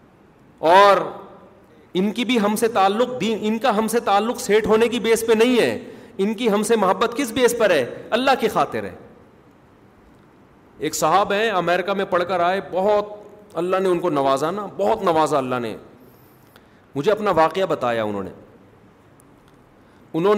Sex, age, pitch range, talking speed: male, 40-59, 130-190 Hz, 170 wpm